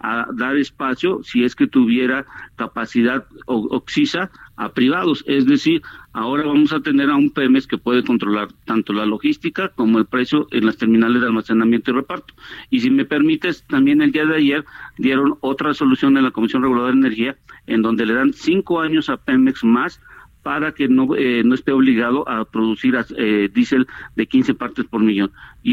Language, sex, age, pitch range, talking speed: Spanish, male, 50-69, 120-190 Hz, 185 wpm